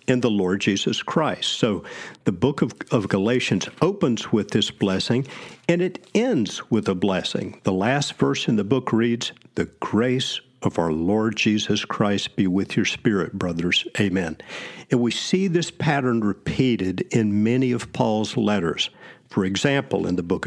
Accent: American